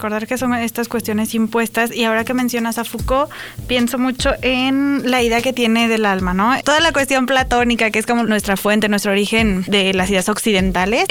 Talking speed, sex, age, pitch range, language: 200 wpm, female, 20-39, 210-255 Hz, Spanish